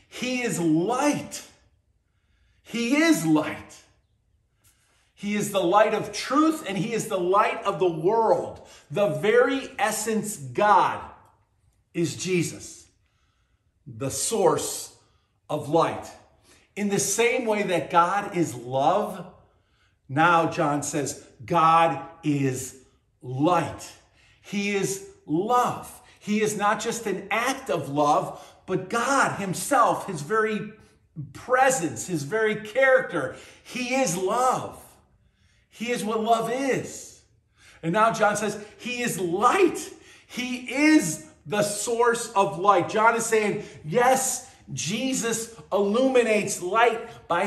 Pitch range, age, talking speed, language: 155-235 Hz, 50-69, 120 wpm, English